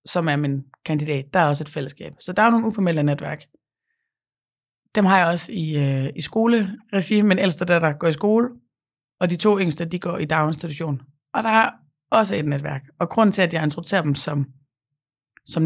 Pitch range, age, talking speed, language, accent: 145-180 Hz, 30-49, 205 wpm, Danish, native